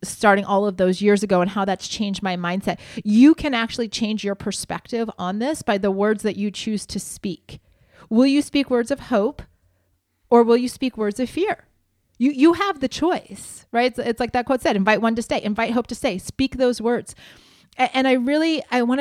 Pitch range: 195-255 Hz